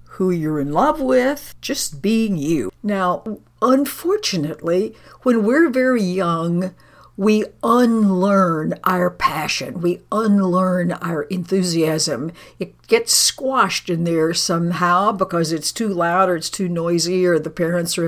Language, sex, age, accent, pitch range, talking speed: English, female, 60-79, American, 165-215 Hz, 135 wpm